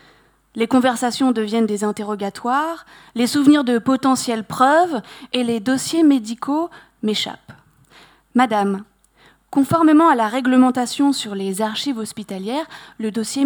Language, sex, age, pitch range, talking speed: French, female, 20-39, 215-275 Hz, 115 wpm